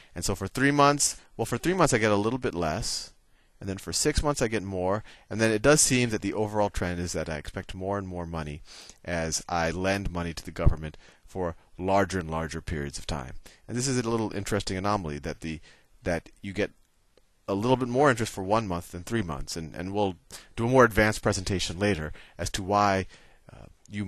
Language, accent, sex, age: English, American, male, 30-49